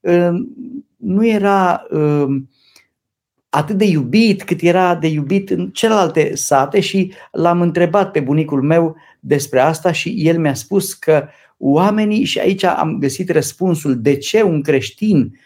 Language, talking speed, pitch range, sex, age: Romanian, 140 wpm, 135-190 Hz, male, 50-69